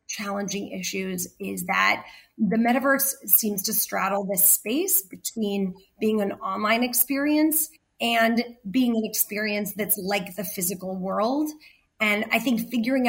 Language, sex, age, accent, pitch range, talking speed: English, female, 30-49, American, 195-235 Hz, 135 wpm